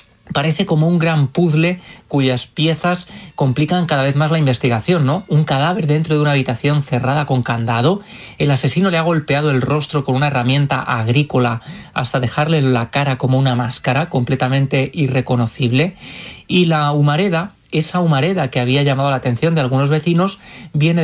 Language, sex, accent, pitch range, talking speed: Spanish, male, Spanish, 130-160 Hz, 165 wpm